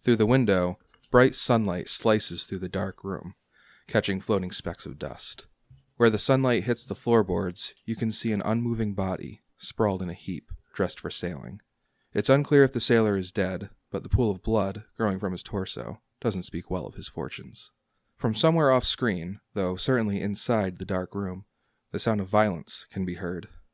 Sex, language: male, English